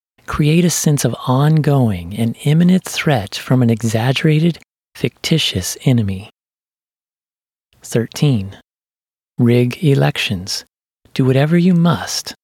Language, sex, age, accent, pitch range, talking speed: English, male, 30-49, American, 115-145 Hz, 95 wpm